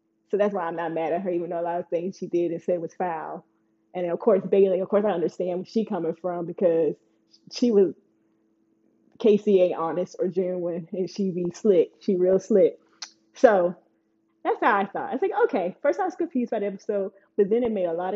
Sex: female